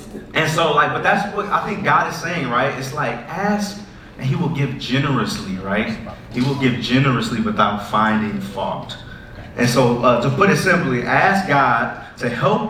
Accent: American